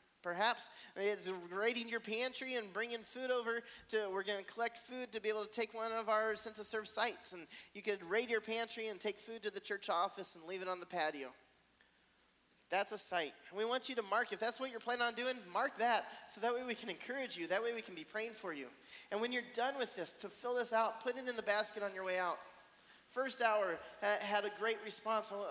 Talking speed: 240 wpm